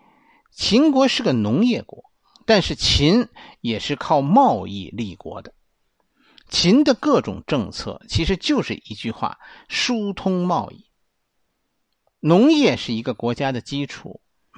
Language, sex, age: Chinese, male, 50-69